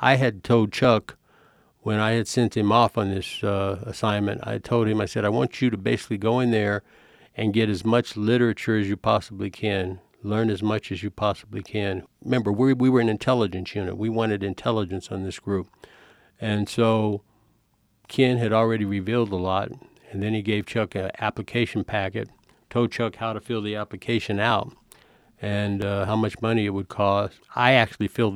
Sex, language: male, English